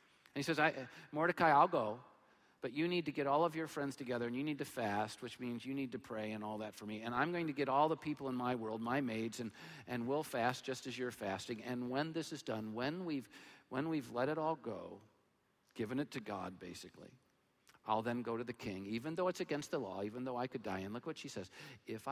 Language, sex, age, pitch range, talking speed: English, male, 50-69, 105-140 Hz, 260 wpm